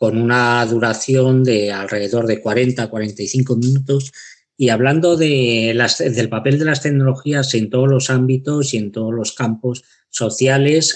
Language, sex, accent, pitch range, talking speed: Spanish, male, Spanish, 115-140 Hz, 160 wpm